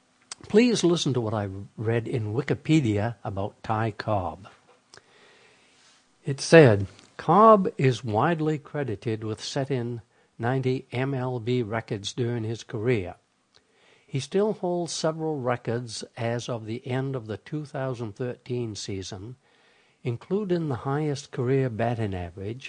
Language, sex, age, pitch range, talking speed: English, male, 60-79, 110-145 Hz, 115 wpm